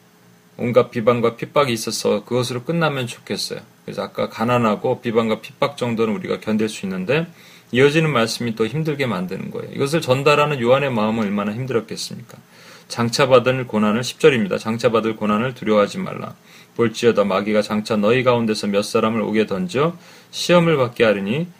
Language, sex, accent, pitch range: Korean, male, native, 110-140 Hz